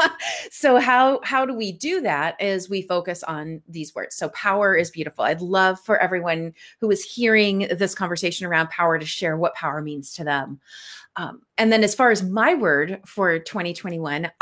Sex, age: female, 30-49